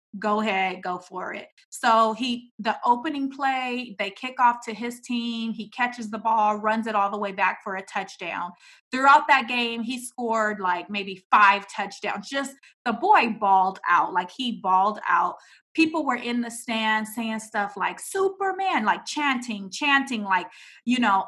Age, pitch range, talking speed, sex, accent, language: 30-49, 220-315 Hz, 175 wpm, female, American, English